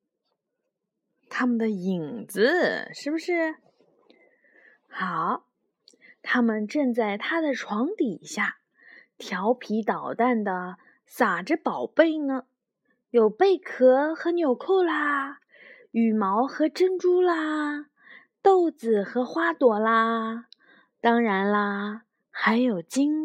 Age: 20-39